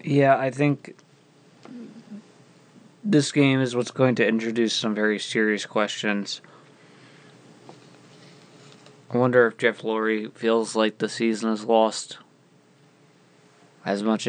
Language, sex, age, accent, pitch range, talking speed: English, male, 20-39, American, 110-135 Hz, 115 wpm